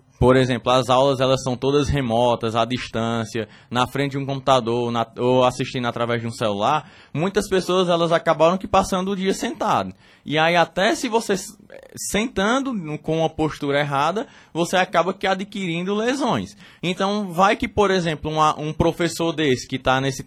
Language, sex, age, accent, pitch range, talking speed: Portuguese, male, 20-39, Brazilian, 135-185 Hz, 170 wpm